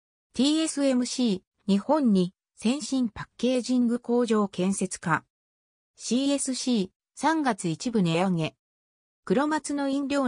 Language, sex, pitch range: Japanese, female, 170-265 Hz